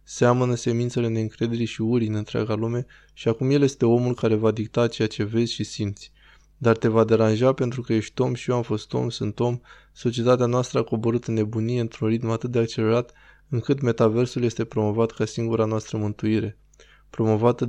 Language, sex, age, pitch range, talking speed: Romanian, male, 20-39, 110-125 Hz, 190 wpm